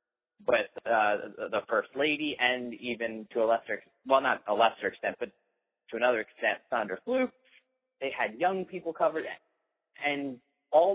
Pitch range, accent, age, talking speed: 120-150 Hz, American, 30-49, 155 wpm